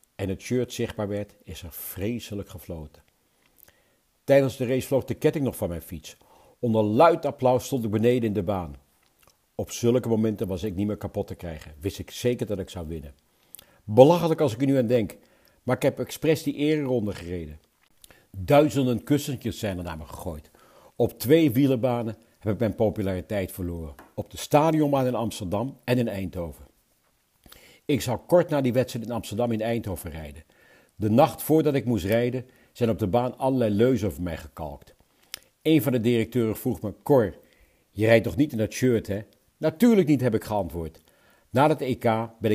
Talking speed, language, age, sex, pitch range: 185 wpm, Dutch, 60-79, male, 95-125 Hz